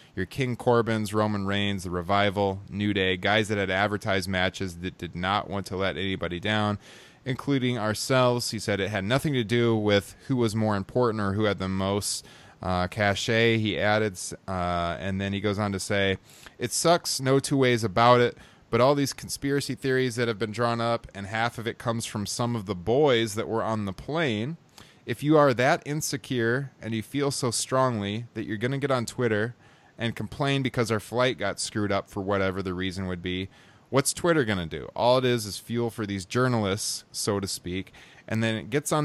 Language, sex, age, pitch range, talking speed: English, male, 20-39, 100-125 Hz, 210 wpm